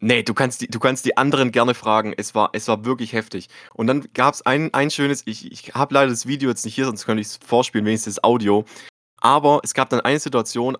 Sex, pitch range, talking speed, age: male, 120-200 Hz, 255 wpm, 20-39